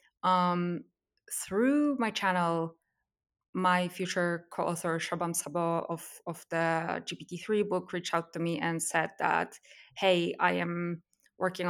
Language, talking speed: English, 130 wpm